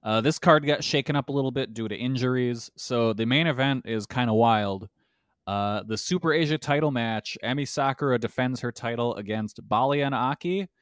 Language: English